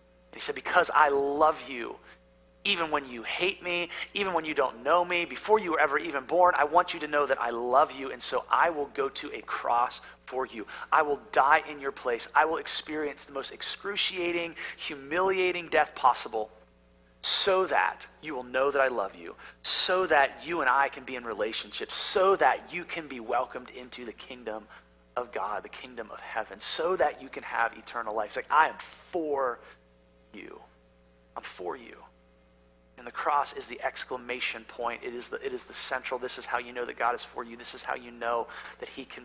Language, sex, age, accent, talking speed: English, male, 30-49, American, 210 wpm